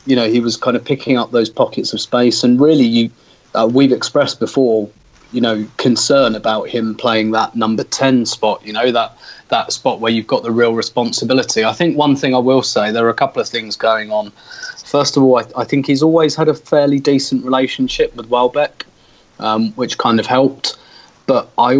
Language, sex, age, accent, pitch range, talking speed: English, male, 30-49, British, 110-130 Hz, 210 wpm